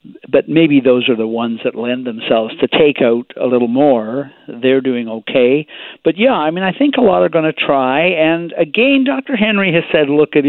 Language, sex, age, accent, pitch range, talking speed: English, male, 50-69, American, 125-160 Hz, 215 wpm